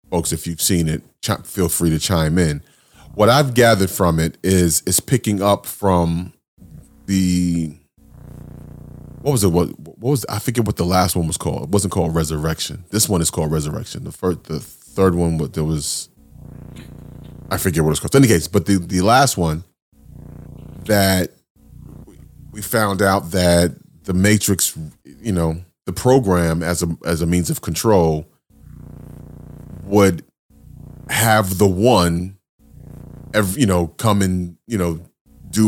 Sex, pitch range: male, 85-100 Hz